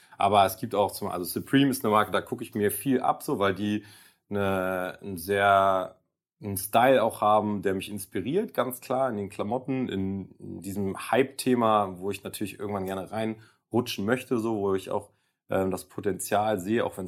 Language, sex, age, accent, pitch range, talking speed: German, male, 30-49, German, 95-115 Hz, 185 wpm